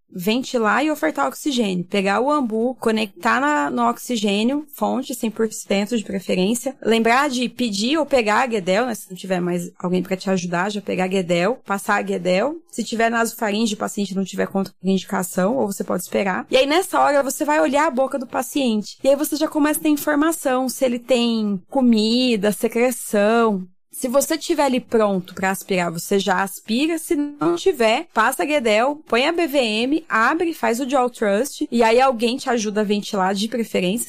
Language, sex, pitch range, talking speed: Portuguese, female, 205-285 Hz, 190 wpm